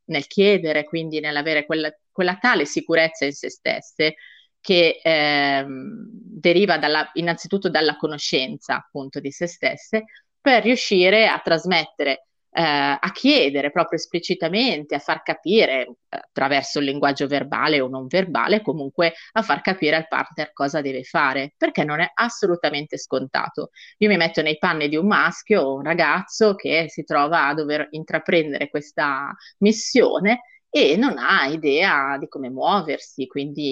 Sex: female